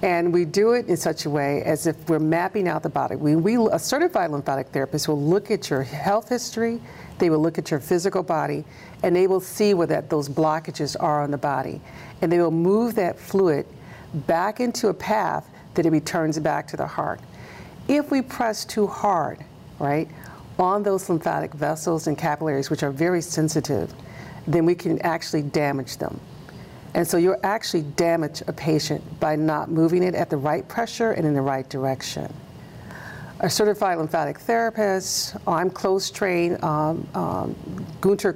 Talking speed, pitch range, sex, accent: 180 wpm, 150-185 Hz, female, American